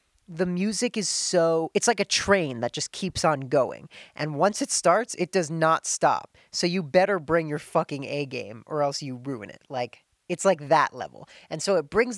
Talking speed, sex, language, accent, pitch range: 210 wpm, female, English, American, 150-230 Hz